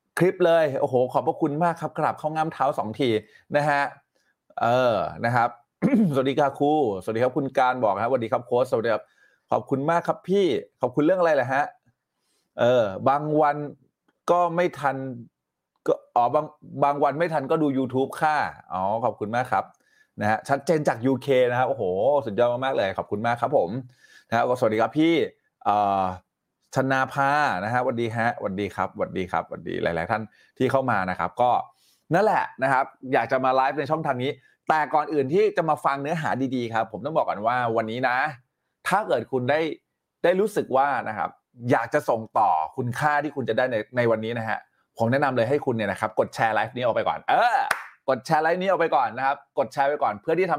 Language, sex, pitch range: Thai, male, 120-160 Hz